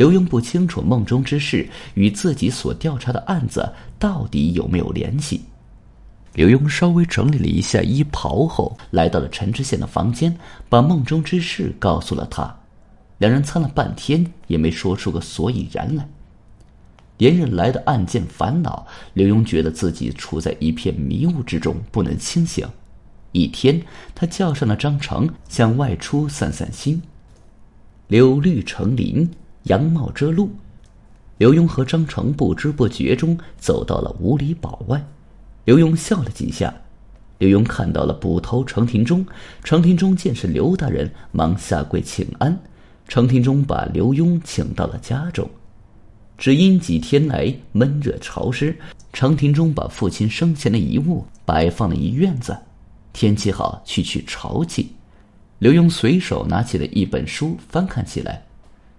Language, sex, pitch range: Chinese, male, 100-155 Hz